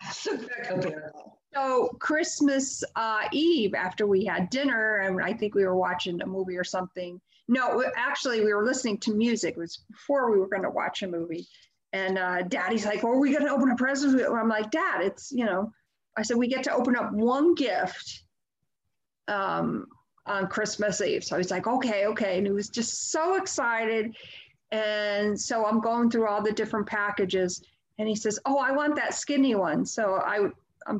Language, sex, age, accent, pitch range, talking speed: English, female, 50-69, American, 205-260 Hz, 185 wpm